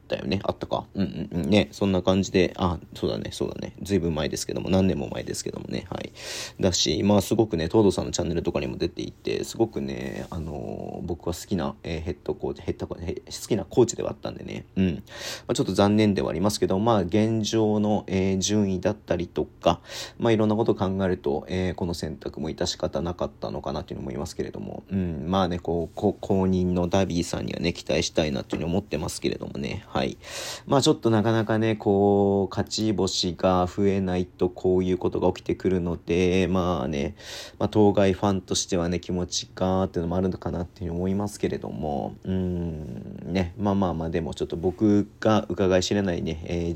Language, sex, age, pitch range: Japanese, male, 40-59, 90-105 Hz